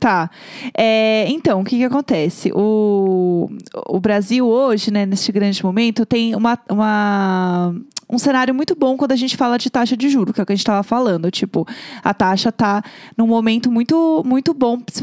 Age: 20-39